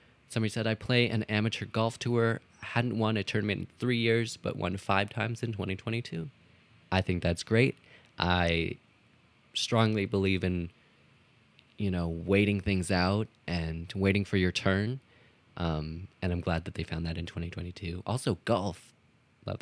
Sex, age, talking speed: male, 20-39, 160 wpm